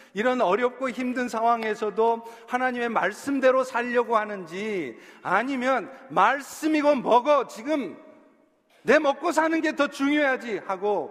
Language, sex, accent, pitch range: Korean, male, native, 175-250 Hz